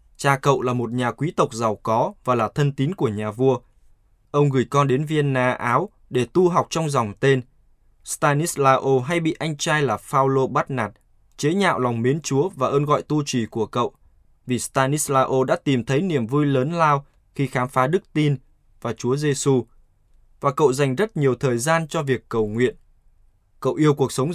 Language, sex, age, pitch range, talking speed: Vietnamese, male, 20-39, 120-145 Hz, 200 wpm